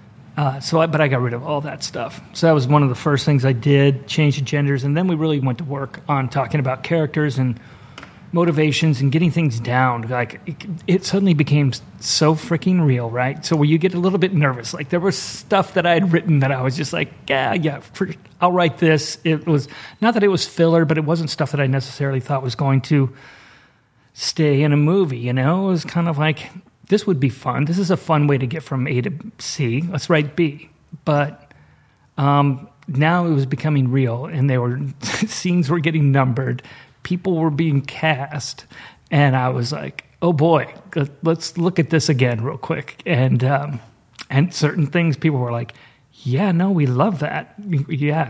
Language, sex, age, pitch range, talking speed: English, male, 40-59, 135-165 Hz, 210 wpm